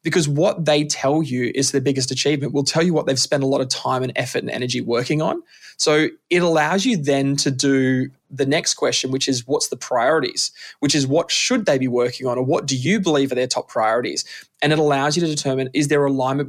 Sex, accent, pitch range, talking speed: male, Australian, 130-150 Hz, 240 wpm